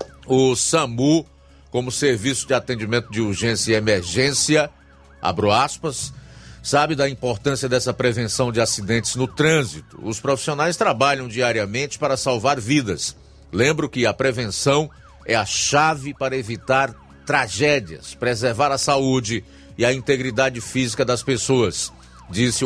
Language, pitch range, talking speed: Portuguese, 110-140 Hz, 125 wpm